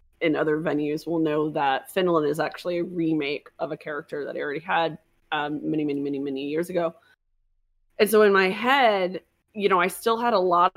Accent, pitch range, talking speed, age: American, 160-190 Hz, 205 wpm, 20-39